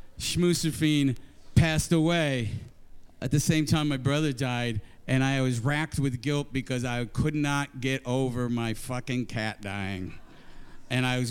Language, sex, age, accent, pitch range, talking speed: English, male, 50-69, American, 125-155 Hz, 155 wpm